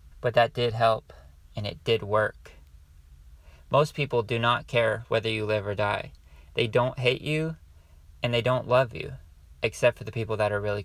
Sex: male